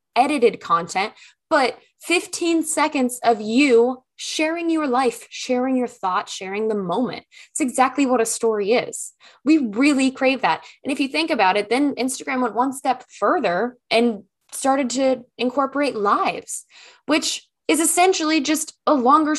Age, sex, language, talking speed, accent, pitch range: 10-29, female, English, 150 wpm, American, 200-270 Hz